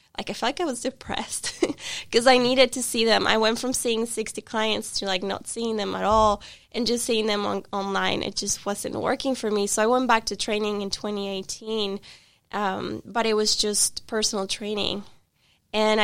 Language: English